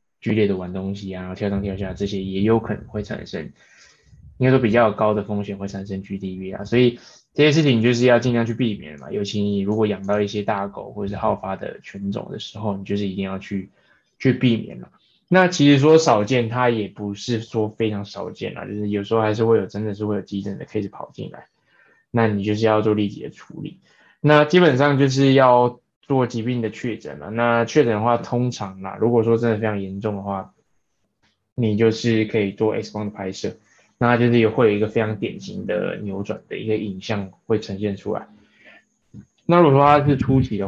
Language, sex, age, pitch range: Chinese, male, 20-39, 100-120 Hz